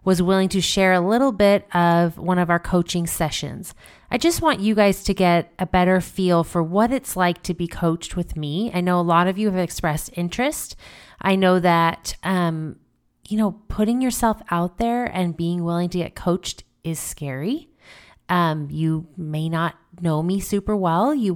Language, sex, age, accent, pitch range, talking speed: English, female, 30-49, American, 165-200 Hz, 190 wpm